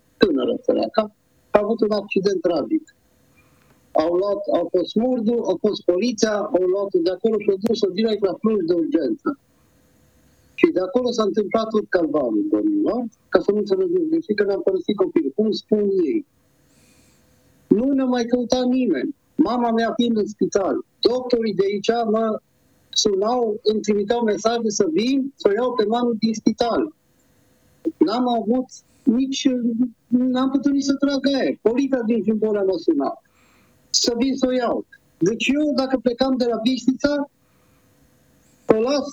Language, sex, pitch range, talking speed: Romanian, male, 215-275 Hz, 155 wpm